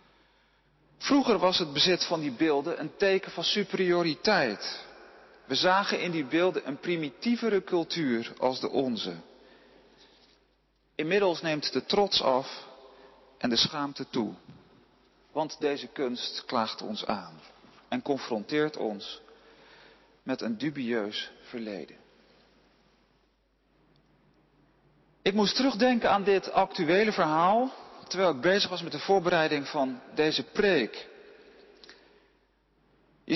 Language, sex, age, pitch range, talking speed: Dutch, male, 40-59, 150-215 Hz, 110 wpm